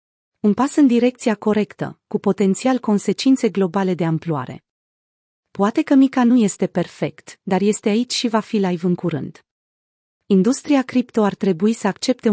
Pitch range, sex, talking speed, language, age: 180-225 Hz, female, 155 wpm, Romanian, 30-49